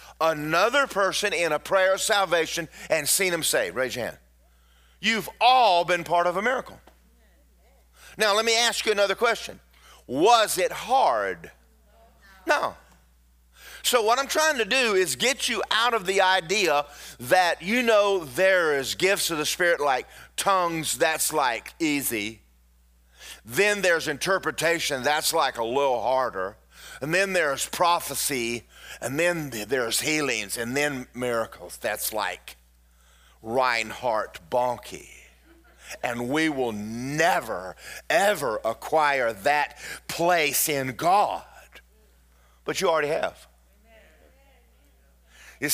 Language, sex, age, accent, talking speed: English, male, 40-59, American, 130 wpm